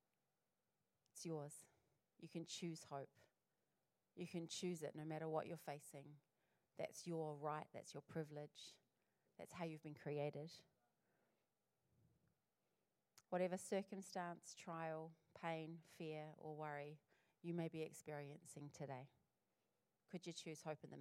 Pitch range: 150-170 Hz